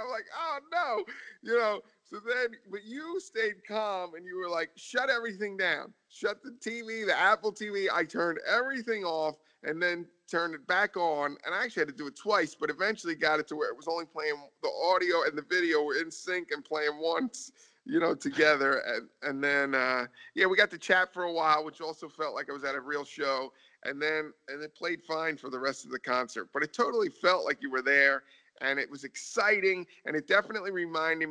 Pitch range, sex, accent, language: 150-200 Hz, male, American, English